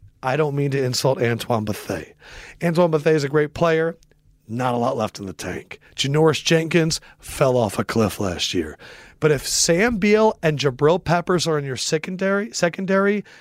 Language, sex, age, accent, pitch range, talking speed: English, male, 40-59, American, 105-155 Hz, 180 wpm